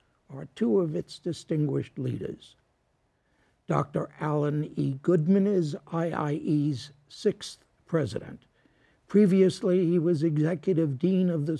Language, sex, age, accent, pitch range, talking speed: English, male, 60-79, American, 150-180 Hz, 110 wpm